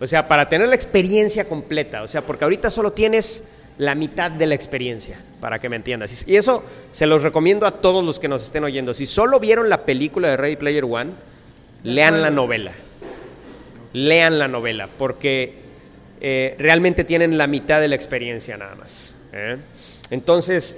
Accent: Mexican